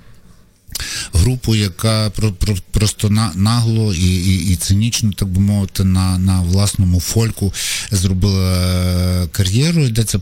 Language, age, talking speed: Ukrainian, 50-69, 105 wpm